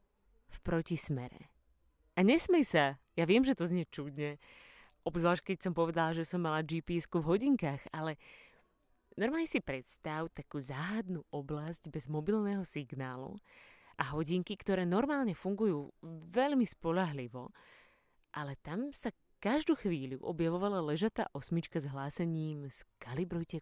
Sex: female